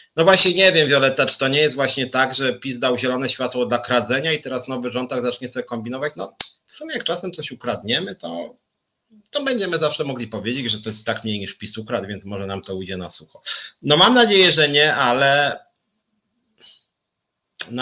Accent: native